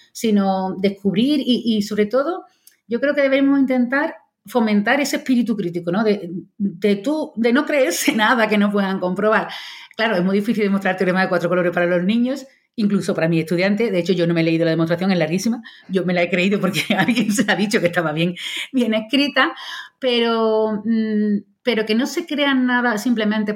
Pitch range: 180-225 Hz